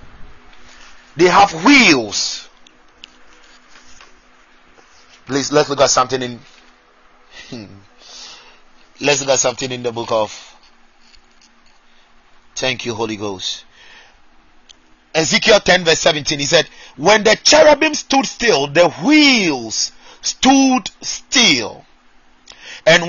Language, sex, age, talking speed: English, male, 30-49, 95 wpm